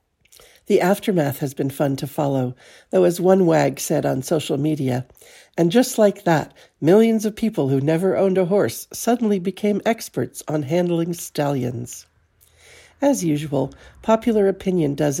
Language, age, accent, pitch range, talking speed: English, 60-79, American, 135-190 Hz, 150 wpm